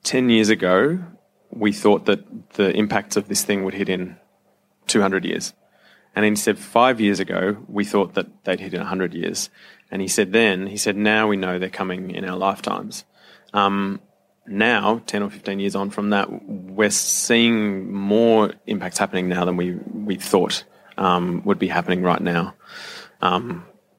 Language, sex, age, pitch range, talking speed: English, male, 20-39, 90-105 Hz, 175 wpm